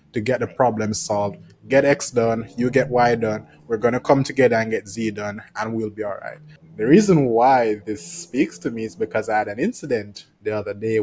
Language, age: English, 20-39